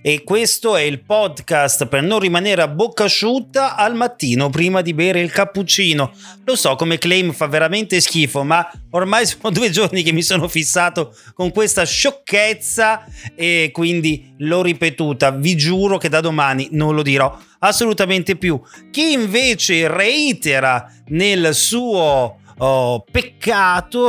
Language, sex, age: Italian, male, 30-49